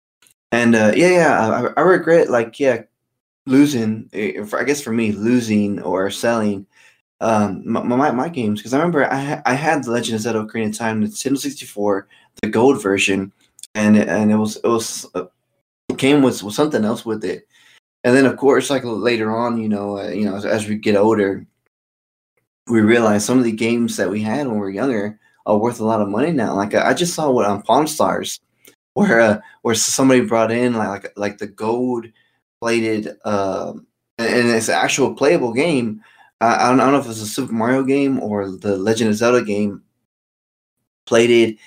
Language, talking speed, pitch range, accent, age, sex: English, 205 wpm, 105-130 Hz, American, 20-39, male